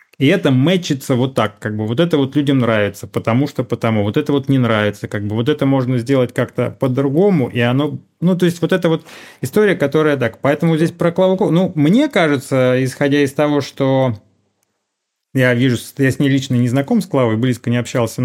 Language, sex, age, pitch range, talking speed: Russian, male, 30-49, 115-145 Hz, 205 wpm